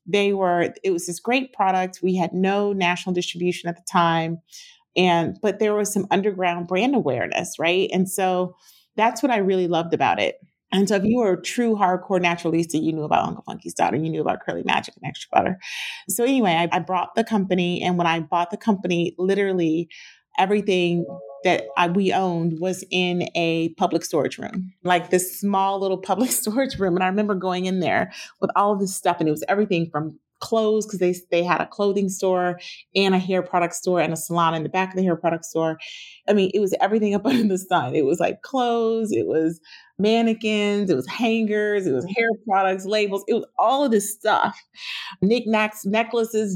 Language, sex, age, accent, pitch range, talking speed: English, female, 30-49, American, 175-210 Hz, 205 wpm